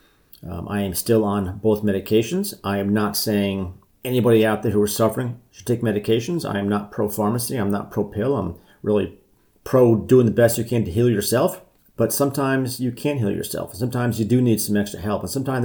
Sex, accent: male, American